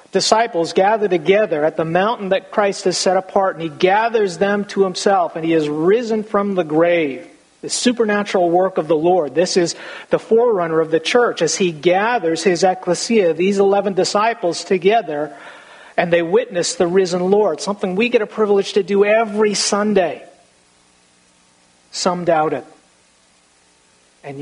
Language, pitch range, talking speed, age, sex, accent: English, 155-195 Hz, 160 wpm, 50-69, male, American